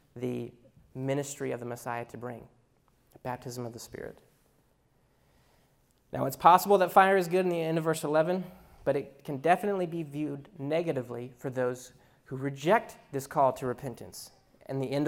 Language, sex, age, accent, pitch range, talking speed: English, male, 20-39, American, 130-165 Hz, 170 wpm